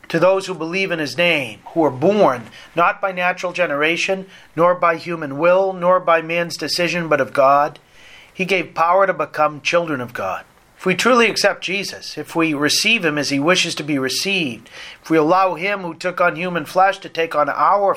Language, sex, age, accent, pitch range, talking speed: English, male, 40-59, American, 150-185 Hz, 205 wpm